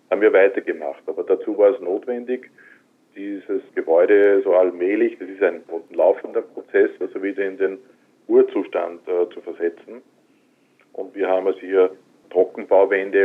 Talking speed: 140 wpm